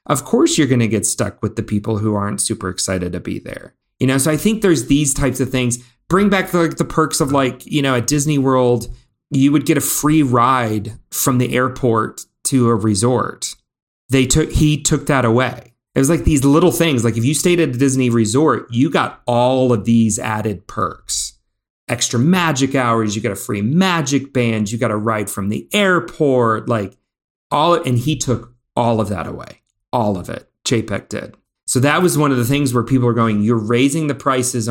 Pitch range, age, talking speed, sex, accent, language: 110-140 Hz, 30-49, 215 wpm, male, American, English